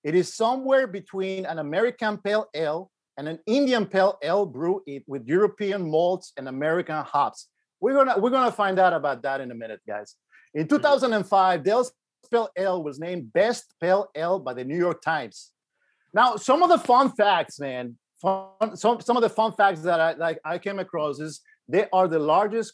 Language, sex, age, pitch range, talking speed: English, male, 50-69, 160-225 Hz, 195 wpm